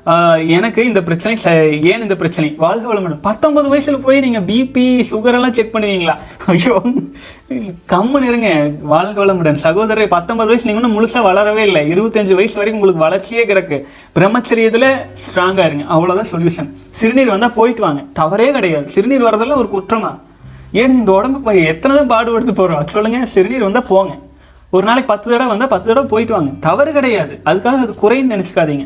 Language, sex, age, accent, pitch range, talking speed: Tamil, male, 30-49, native, 180-230 Hz, 155 wpm